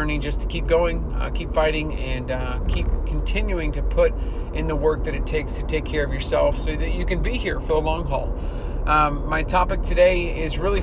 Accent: American